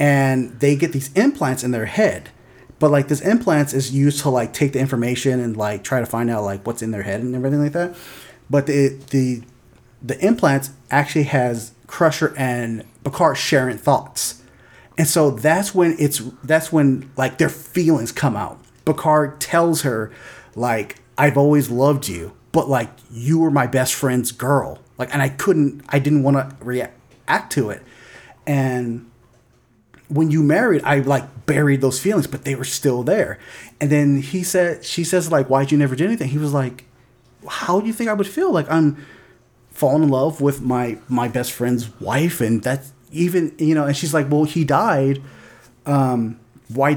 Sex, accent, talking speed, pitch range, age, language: male, American, 185 wpm, 125-155 Hz, 30-49, English